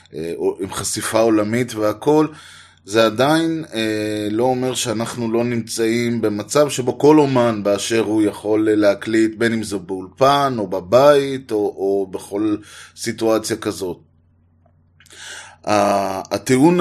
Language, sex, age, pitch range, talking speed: Hebrew, male, 20-39, 100-125 Hz, 120 wpm